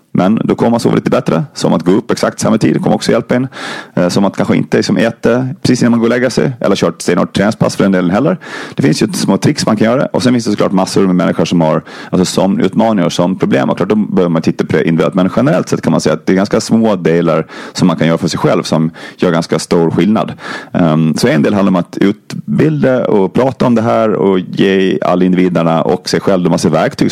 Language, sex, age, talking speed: Swedish, male, 30-49, 260 wpm